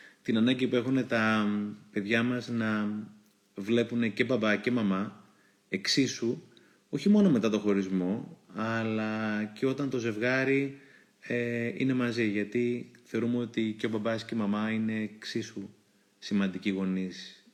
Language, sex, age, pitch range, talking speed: Greek, male, 30-49, 100-130 Hz, 135 wpm